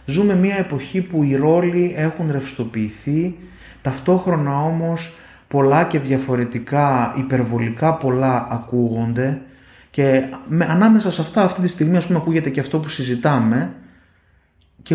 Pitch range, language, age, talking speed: 115-175 Hz, Greek, 30-49, 130 wpm